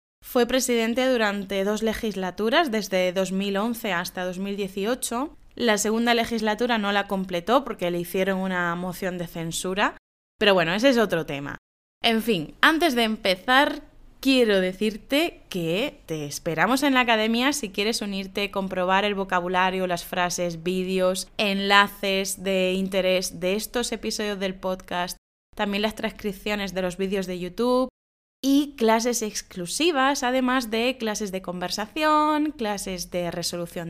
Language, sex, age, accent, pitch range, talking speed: Spanish, female, 20-39, Spanish, 185-235 Hz, 135 wpm